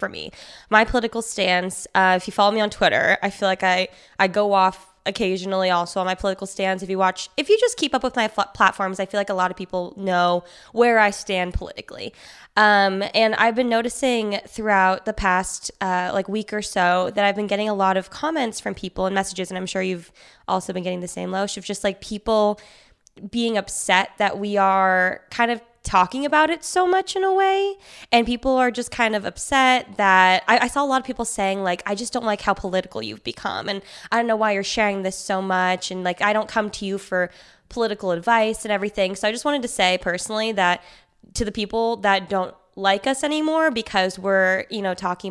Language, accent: English, American